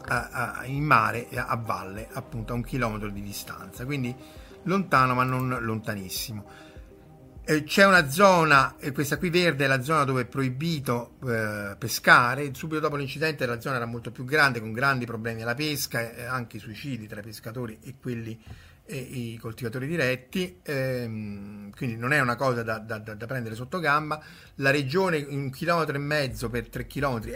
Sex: male